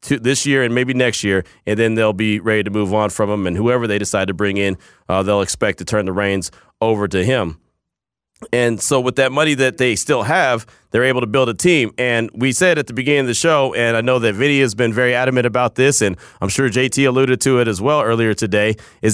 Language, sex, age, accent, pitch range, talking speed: English, male, 30-49, American, 110-135 Hz, 250 wpm